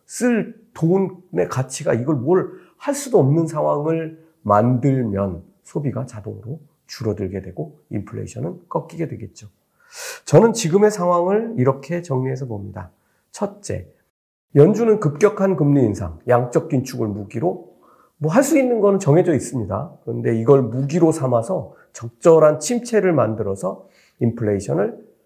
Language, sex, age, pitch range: Korean, male, 40-59, 115-175 Hz